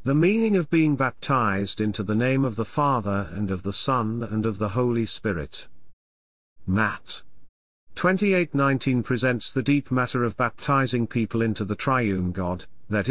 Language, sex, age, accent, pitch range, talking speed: English, male, 50-69, British, 100-140 Hz, 160 wpm